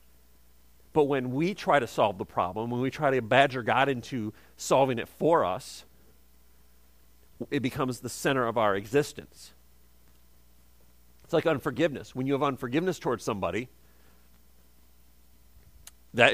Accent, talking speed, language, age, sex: American, 130 wpm, English, 40-59, male